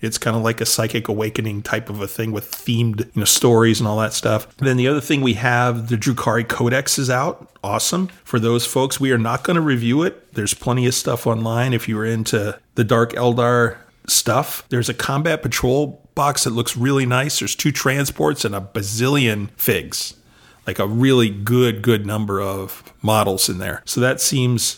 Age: 40-59